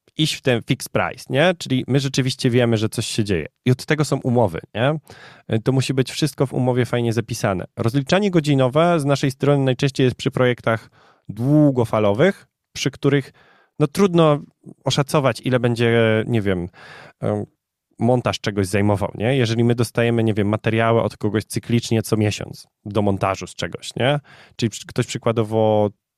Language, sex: Polish, male